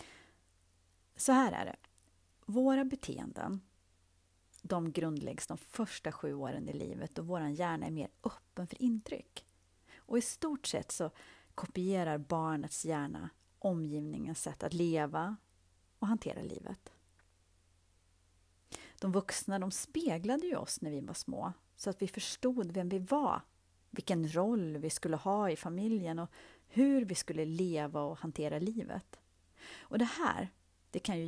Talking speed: 140 wpm